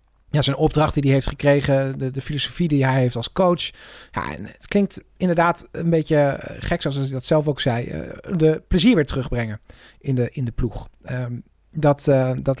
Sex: male